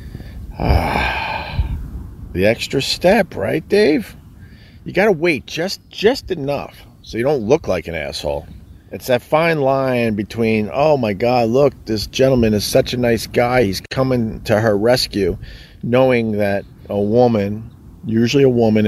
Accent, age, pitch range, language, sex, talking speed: American, 40-59, 95-115 Hz, English, male, 150 wpm